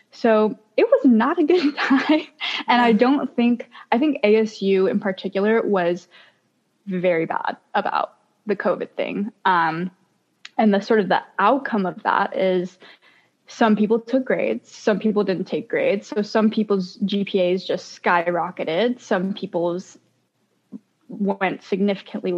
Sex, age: female, 10-29